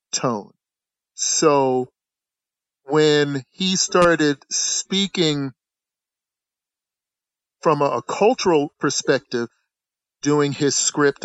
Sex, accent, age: male, American, 40-59